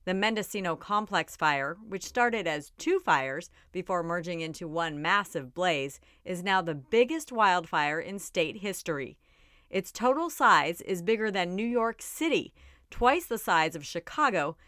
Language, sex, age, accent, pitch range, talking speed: English, female, 40-59, American, 165-225 Hz, 150 wpm